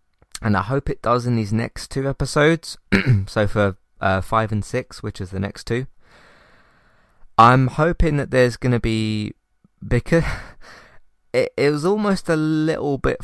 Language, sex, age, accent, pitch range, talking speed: English, male, 20-39, British, 95-125 Hz, 165 wpm